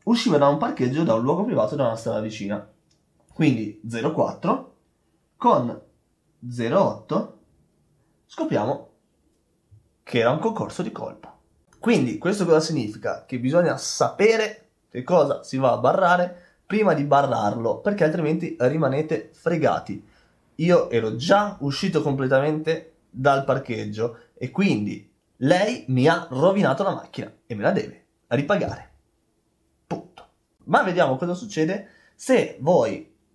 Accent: native